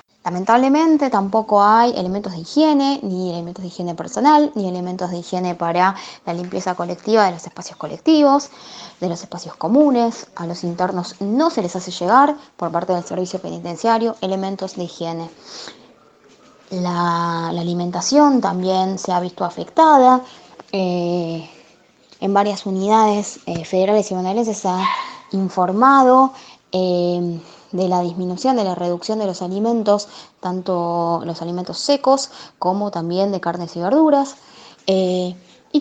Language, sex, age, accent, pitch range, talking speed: Spanish, female, 20-39, Argentinian, 175-230 Hz, 140 wpm